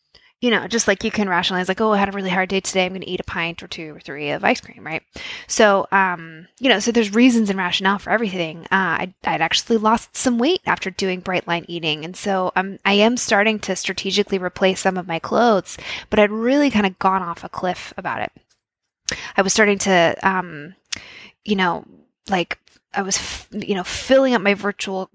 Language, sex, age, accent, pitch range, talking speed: English, female, 10-29, American, 180-215 Hz, 220 wpm